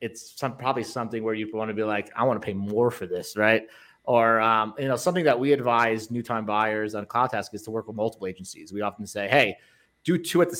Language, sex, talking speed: English, male, 260 wpm